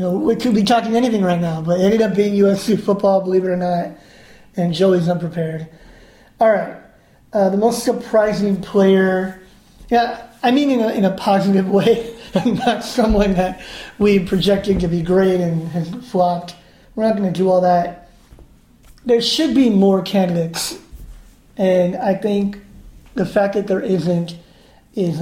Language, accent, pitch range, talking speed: English, American, 175-205 Hz, 170 wpm